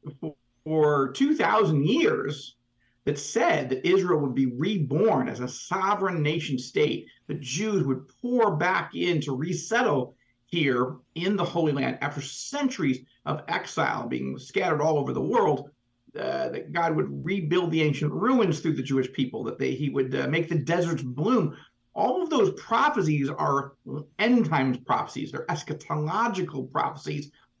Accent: American